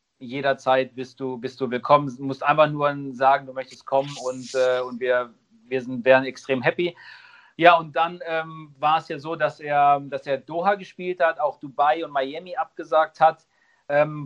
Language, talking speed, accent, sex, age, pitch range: German, 180 wpm, German, male, 40-59, 135-155 Hz